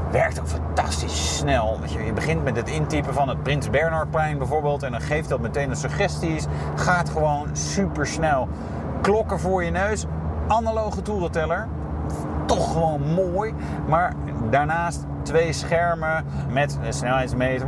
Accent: Dutch